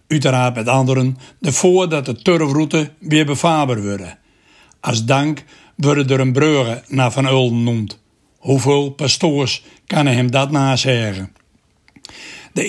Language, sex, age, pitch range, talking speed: Dutch, male, 60-79, 130-155 Hz, 130 wpm